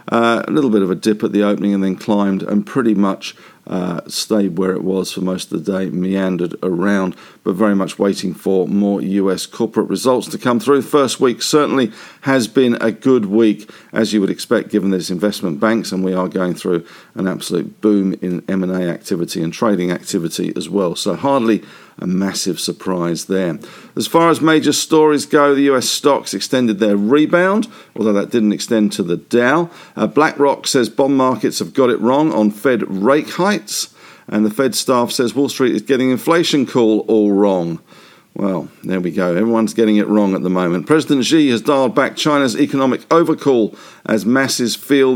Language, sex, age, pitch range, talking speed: English, male, 50-69, 95-130 Hz, 195 wpm